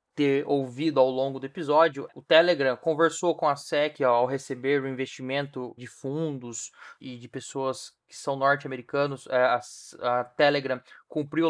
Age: 20-39